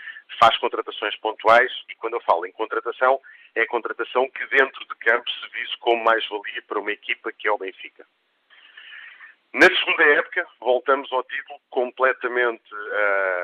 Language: Portuguese